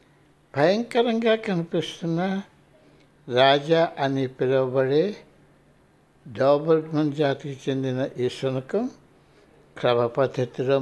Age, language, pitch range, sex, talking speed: 60-79, Telugu, 130-185 Hz, male, 65 wpm